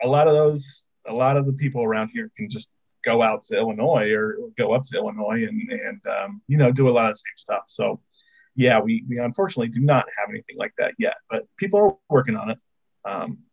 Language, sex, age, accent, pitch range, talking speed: English, male, 20-39, American, 115-160 Hz, 235 wpm